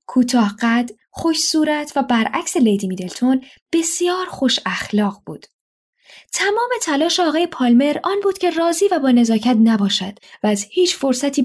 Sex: female